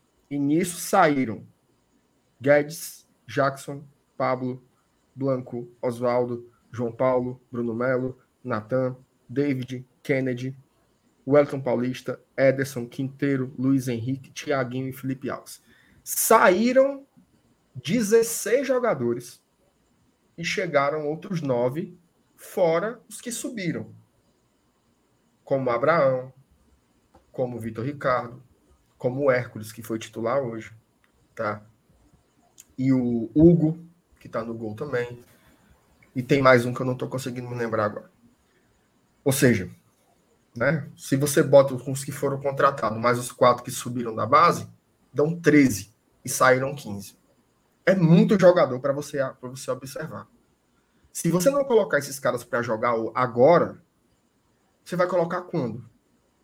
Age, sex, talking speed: 20-39, male, 115 wpm